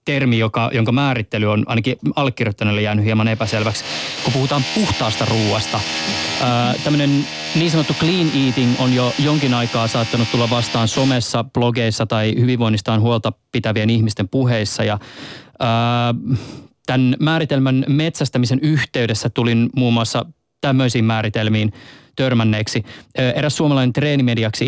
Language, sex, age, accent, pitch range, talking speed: Finnish, male, 20-39, native, 115-135 Hz, 110 wpm